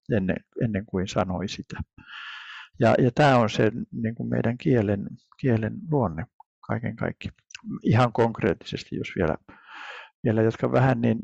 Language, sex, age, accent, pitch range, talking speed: Finnish, male, 60-79, native, 110-130 Hz, 135 wpm